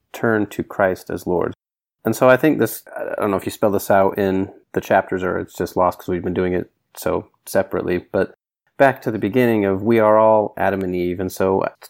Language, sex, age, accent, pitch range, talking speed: English, male, 30-49, American, 95-110 Hz, 235 wpm